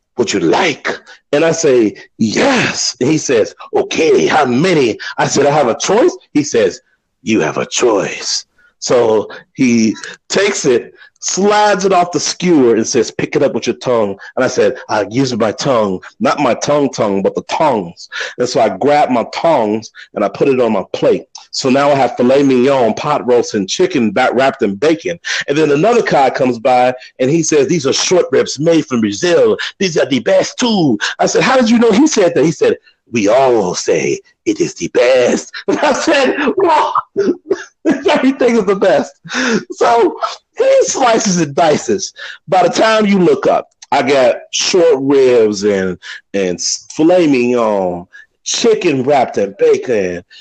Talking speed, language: 180 wpm, English